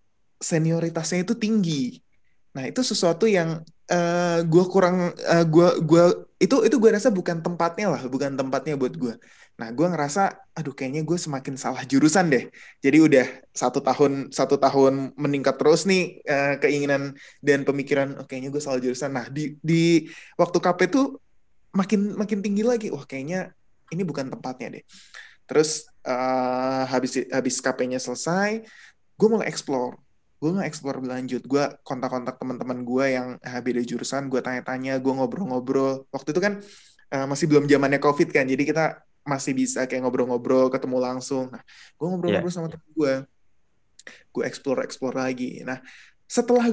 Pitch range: 130-170 Hz